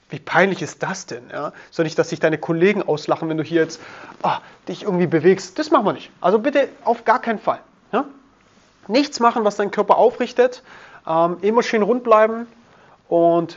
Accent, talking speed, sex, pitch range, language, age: German, 195 wpm, male, 165-225 Hz, German, 30-49